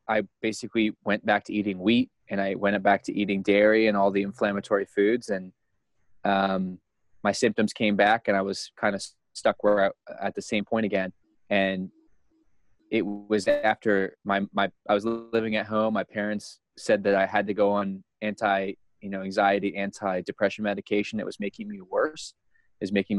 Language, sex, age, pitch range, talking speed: English, male, 20-39, 95-110 Hz, 180 wpm